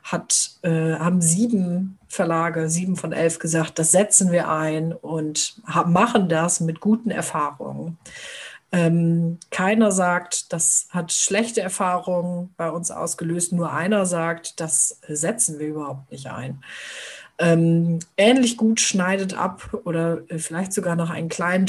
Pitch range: 160-185 Hz